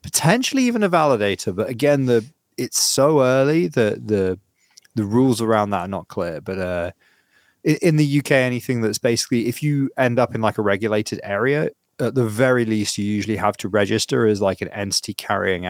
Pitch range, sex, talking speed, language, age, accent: 95-125 Hz, male, 195 wpm, English, 20-39, British